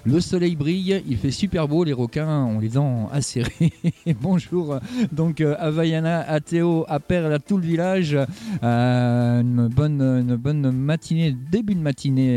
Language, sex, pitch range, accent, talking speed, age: French, male, 135-185 Hz, French, 165 wpm, 50-69